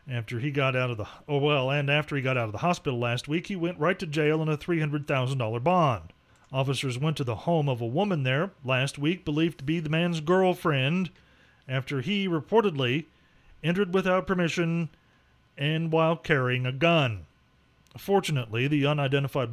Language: English